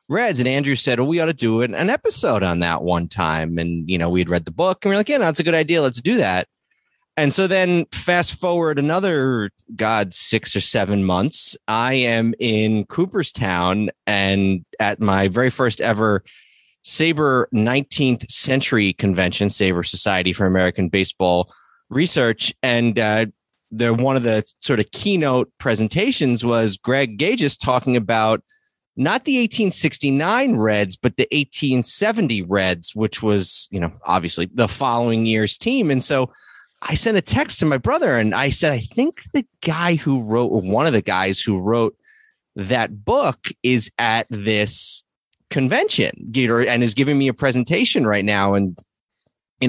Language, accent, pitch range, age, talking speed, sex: English, American, 100-135 Hz, 30-49, 165 wpm, male